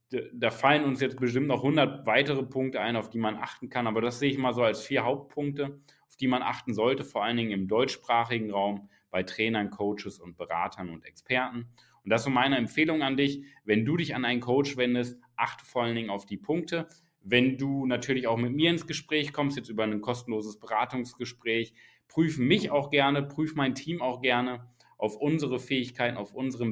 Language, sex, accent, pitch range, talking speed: German, male, German, 110-140 Hz, 205 wpm